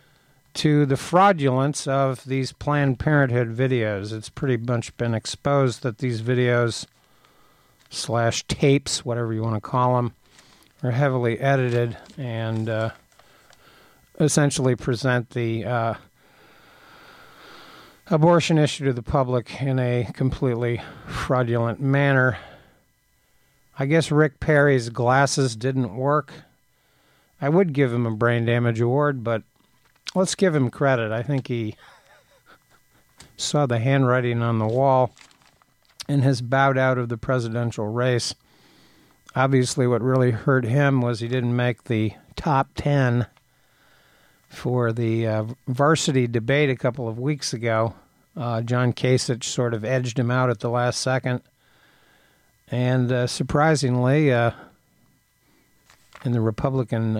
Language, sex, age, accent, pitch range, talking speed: English, male, 50-69, American, 120-140 Hz, 125 wpm